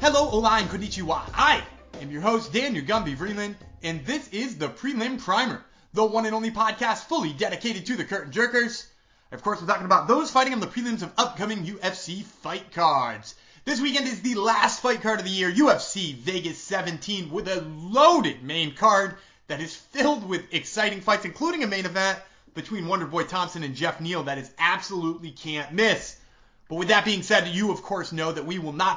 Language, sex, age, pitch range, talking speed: English, male, 30-49, 160-220 Hz, 195 wpm